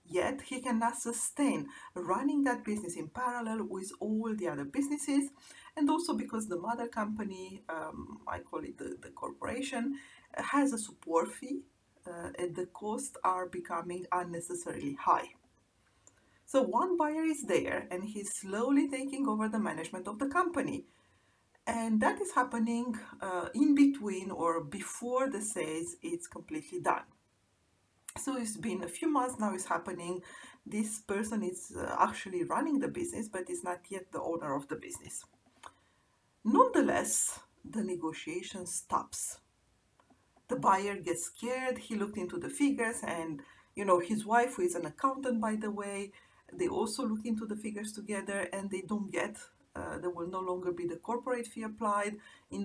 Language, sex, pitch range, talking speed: English, female, 180-260 Hz, 160 wpm